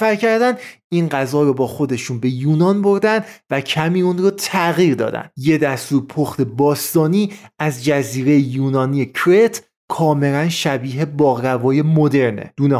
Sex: male